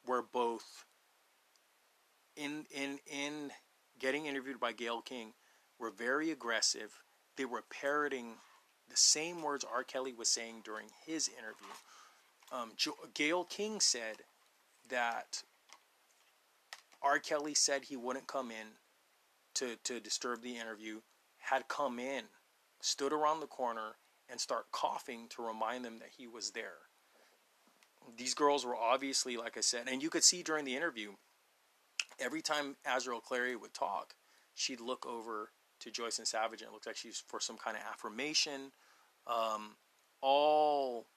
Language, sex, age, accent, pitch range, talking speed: English, male, 30-49, American, 115-145 Hz, 145 wpm